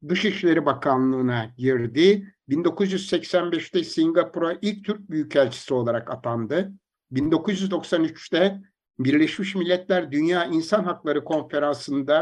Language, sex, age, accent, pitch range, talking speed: Turkish, male, 60-79, native, 130-180 Hz, 85 wpm